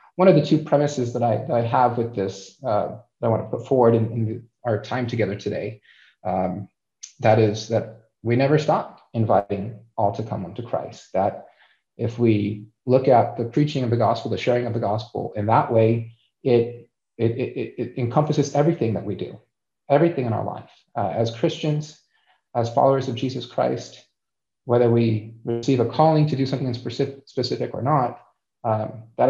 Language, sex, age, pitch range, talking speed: English, male, 30-49, 115-135 Hz, 180 wpm